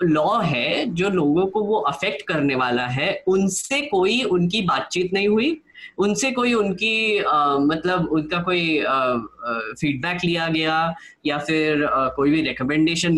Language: Hindi